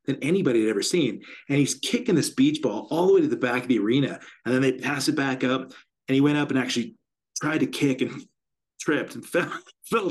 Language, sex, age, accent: English, male, 30-49, American